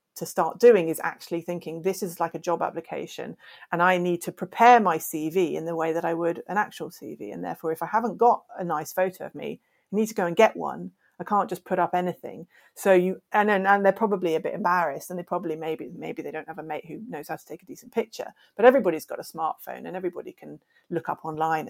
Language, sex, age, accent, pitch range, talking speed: English, female, 40-59, British, 165-200 Hz, 250 wpm